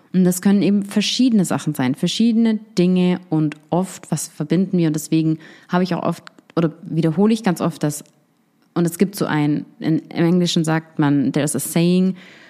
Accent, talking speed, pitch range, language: German, 190 wpm, 160-200 Hz, English